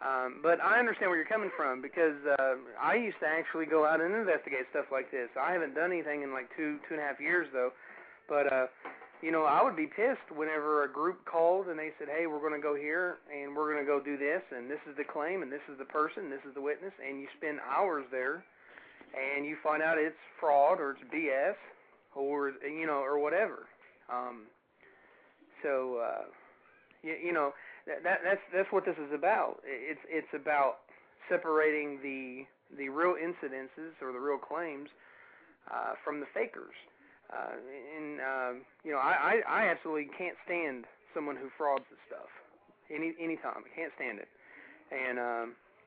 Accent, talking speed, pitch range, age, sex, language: American, 195 wpm, 140-175 Hz, 30-49, male, English